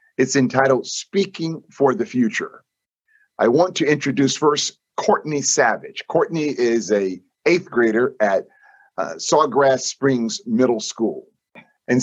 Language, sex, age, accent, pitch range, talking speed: English, male, 50-69, American, 110-175 Hz, 125 wpm